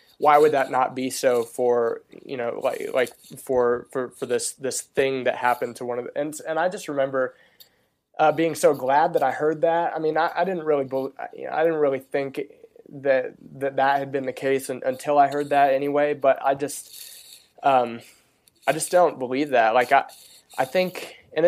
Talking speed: 210 wpm